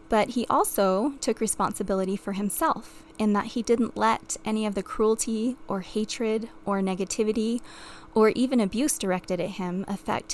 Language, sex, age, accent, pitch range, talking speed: English, female, 20-39, American, 200-240 Hz, 155 wpm